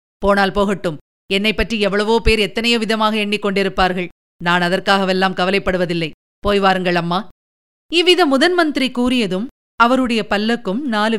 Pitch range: 185-260 Hz